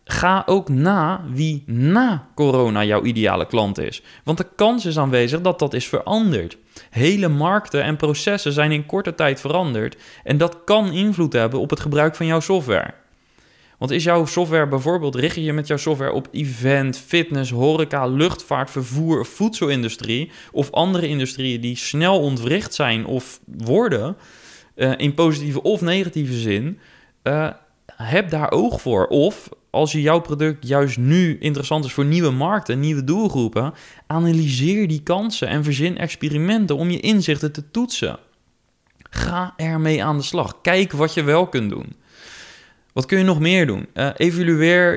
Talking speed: 160 wpm